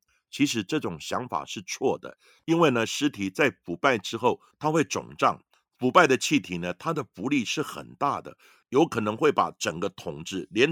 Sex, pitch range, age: male, 100-155 Hz, 50-69